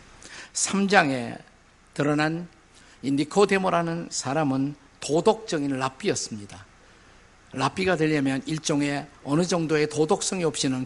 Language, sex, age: Korean, male, 50-69